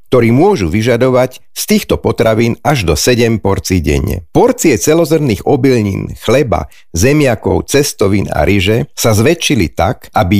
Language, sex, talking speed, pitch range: Slovak, male, 135 wpm, 95-130 Hz